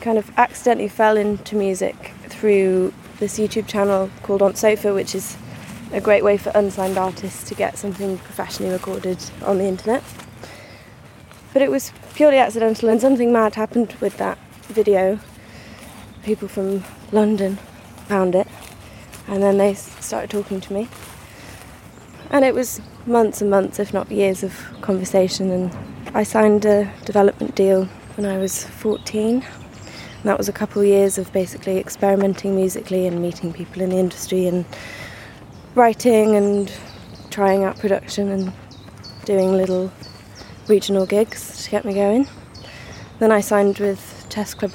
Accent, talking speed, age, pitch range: British, 150 wpm, 20-39, 185-210 Hz